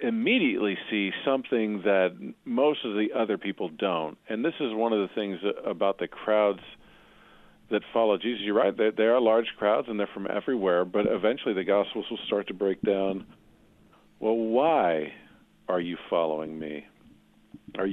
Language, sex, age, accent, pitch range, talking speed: English, male, 40-59, American, 95-115 Hz, 165 wpm